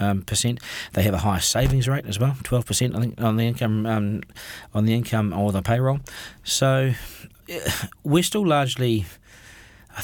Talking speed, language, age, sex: 175 wpm, English, 40-59, male